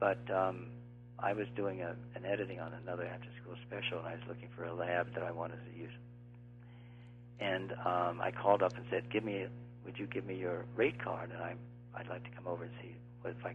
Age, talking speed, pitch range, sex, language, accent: 60-79, 225 wpm, 115-120 Hz, male, English, American